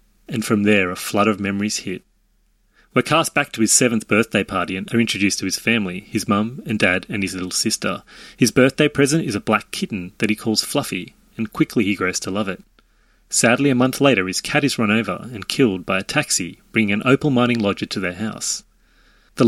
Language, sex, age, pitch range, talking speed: English, male, 30-49, 100-125 Hz, 220 wpm